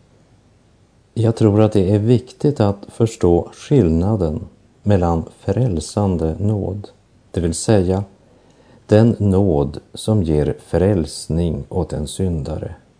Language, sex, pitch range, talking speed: Portuguese, male, 85-110 Hz, 105 wpm